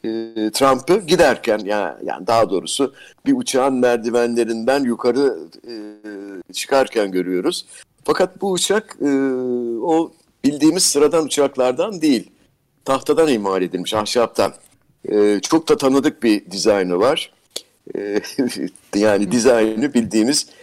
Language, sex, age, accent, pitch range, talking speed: Turkish, male, 60-79, native, 110-150 Hz, 95 wpm